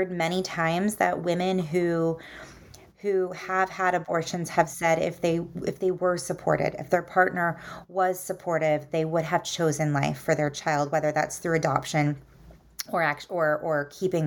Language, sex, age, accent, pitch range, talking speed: English, female, 30-49, American, 160-185 Hz, 160 wpm